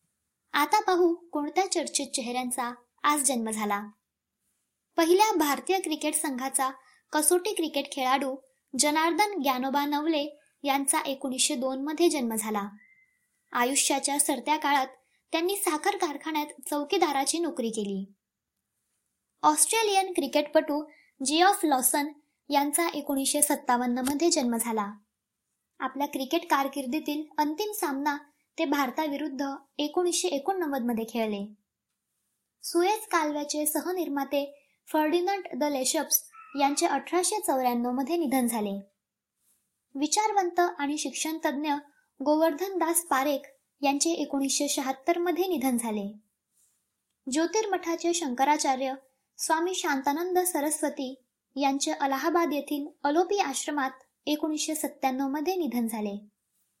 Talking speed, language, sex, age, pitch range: 80 wpm, Marathi, male, 20-39, 270-330 Hz